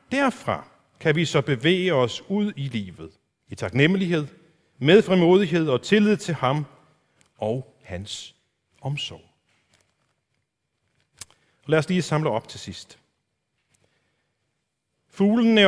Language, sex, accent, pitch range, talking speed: Danish, male, native, 130-175 Hz, 110 wpm